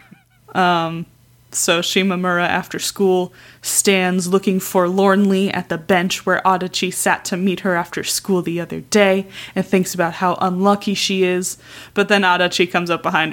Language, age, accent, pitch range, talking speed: English, 20-39, American, 170-195 Hz, 160 wpm